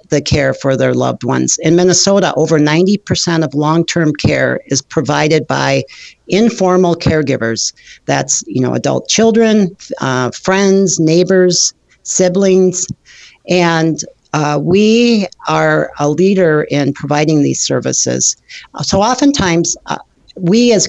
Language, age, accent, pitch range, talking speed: English, 50-69, American, 145-185 Hz, 120 wpm